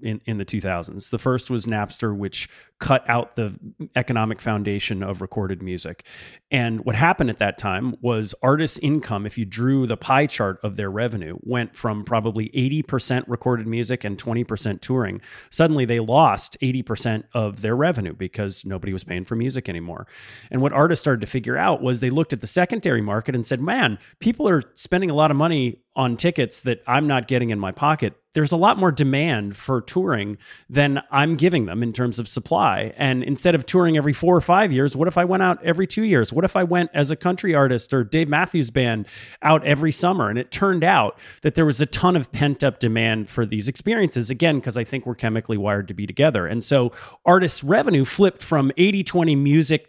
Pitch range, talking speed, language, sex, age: 115-160 Hz, 205 wpm, English, male, 30-49